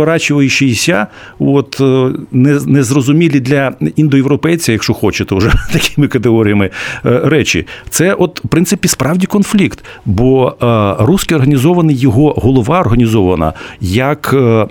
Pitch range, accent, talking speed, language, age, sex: 105-135 Hz, native, 100 wpm, Ukrainian, 50-69, male